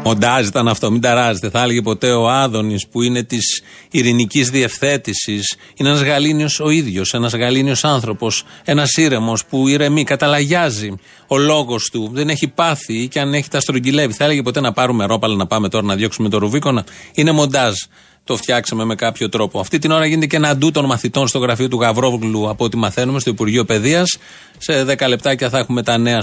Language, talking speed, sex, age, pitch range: Greek, 195 wpm, male, 30-49, 120-155 Hz